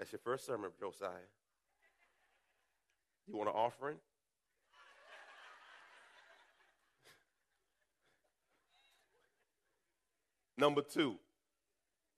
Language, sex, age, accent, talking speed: English, male, 40-59, American, 55 wpm